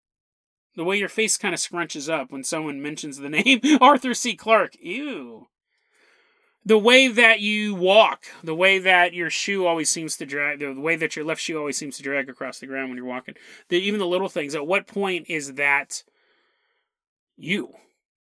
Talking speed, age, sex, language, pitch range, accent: 190 wpm, 30-49, male, English, 155-230 Hz, American